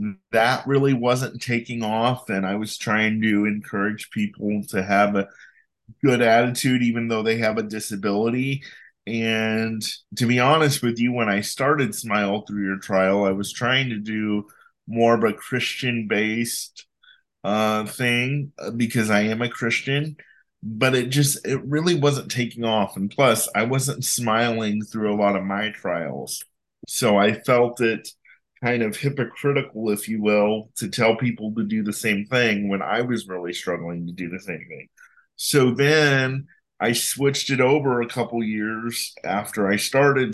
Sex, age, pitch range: male, 20-39, 105-130 Hz